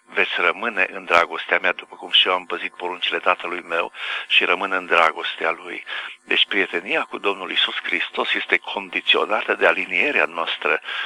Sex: male